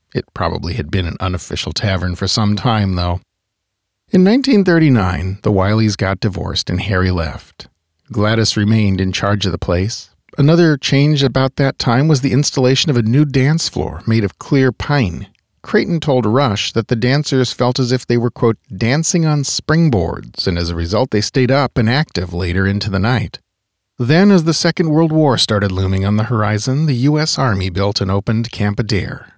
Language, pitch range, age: English, 95-135 Hz, 40-59